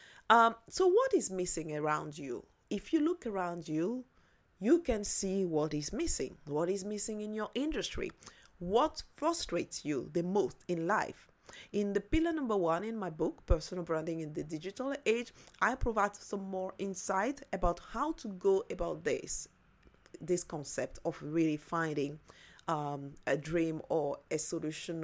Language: English